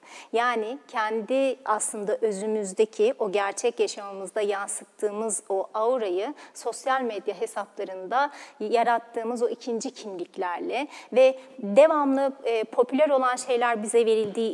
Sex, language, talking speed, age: female, Turkish, 105 wpm, 30-49